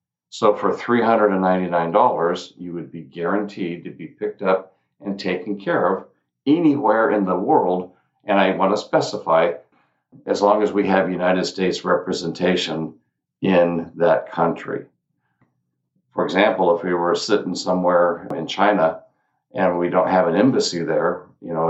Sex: male